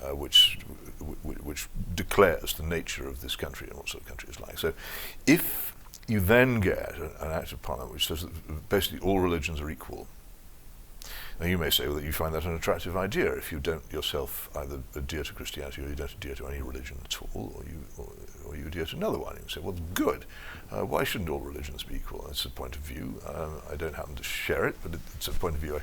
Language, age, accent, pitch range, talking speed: English, 60-79, British, 75-90 Hz, 230 wpm